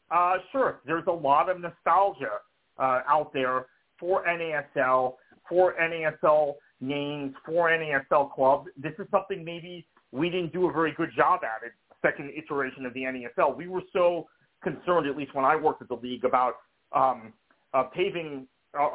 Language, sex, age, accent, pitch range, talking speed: English, male, 40-59, American, 130-175 Hz, 170 wpm